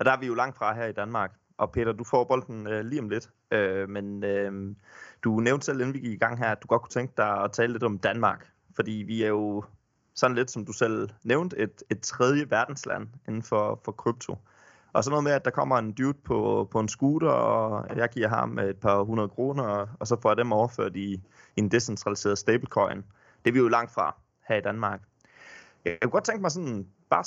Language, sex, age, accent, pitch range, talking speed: Danish, male, 20-39, native, 105-130 Hz, 240 wpm